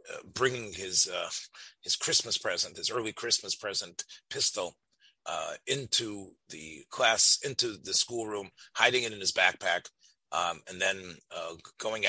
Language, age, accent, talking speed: English, 40-59, American, 145 wpm